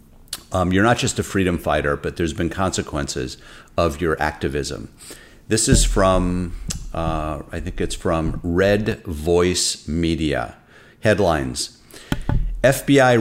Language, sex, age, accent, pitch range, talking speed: English, male, 50-69, American, 85-100 Hz, 125 wpm